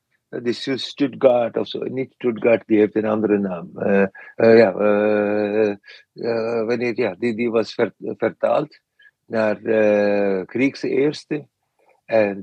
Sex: male